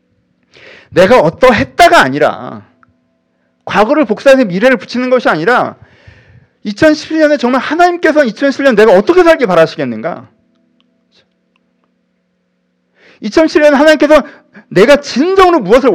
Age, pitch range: 40-59, 190-270 Hz